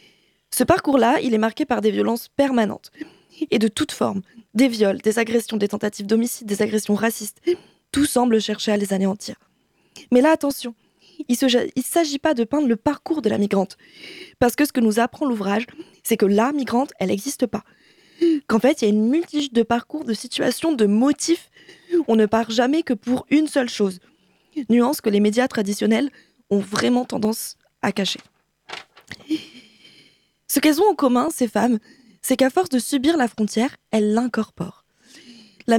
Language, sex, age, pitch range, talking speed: French, female, 20-39, 220-285 Hz, 180 wpm